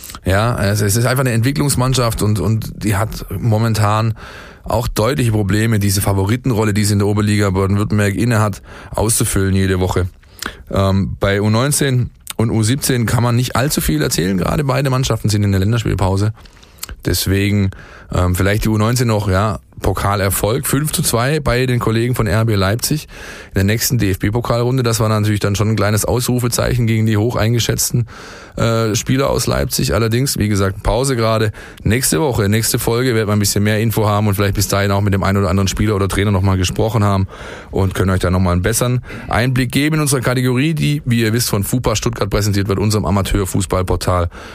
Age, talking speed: 20-39, 185 wpm